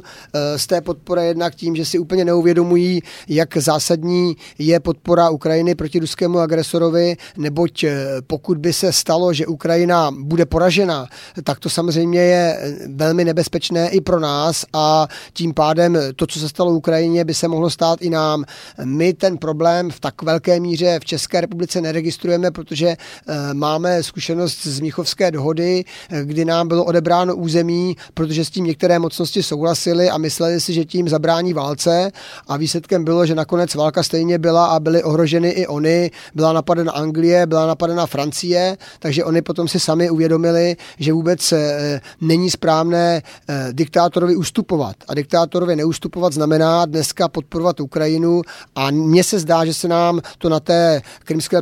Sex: male